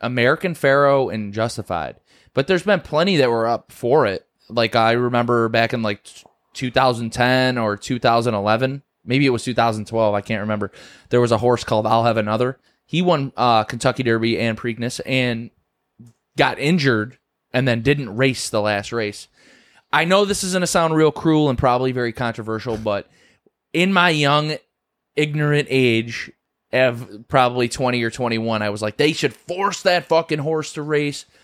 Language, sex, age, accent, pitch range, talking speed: English, male, 20-39, American, 115-155 Hz, 170 wpm